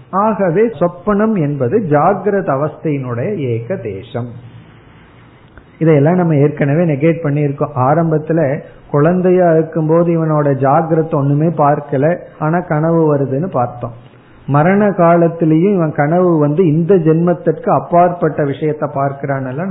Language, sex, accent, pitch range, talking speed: Tamil, male, native, 135-170 Hz, 110 wpm